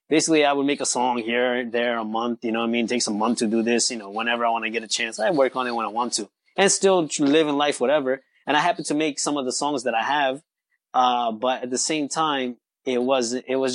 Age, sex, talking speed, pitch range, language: 20-39, male, 290 wpm, 120-140 Hz, English